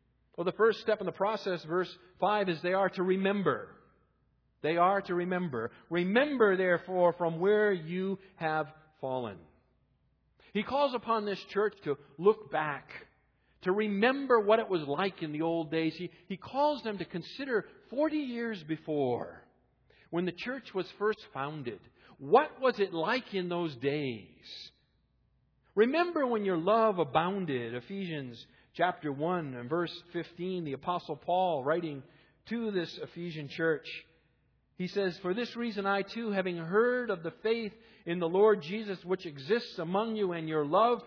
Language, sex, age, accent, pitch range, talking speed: English, male, 50-69, American, 165-215 Hz, 155 wpm